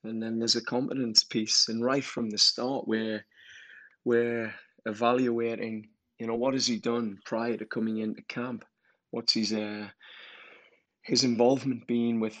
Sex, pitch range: male, 115-135 Hz